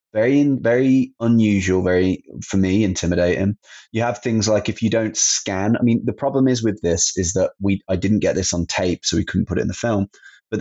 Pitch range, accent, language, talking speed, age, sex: 90-110 Hz, British, English, 225 wpm, 20-39, male